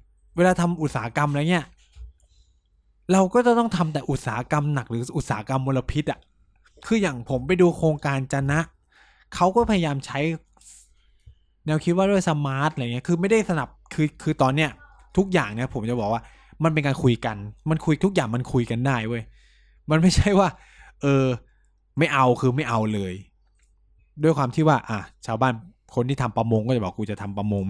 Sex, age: male, 20-39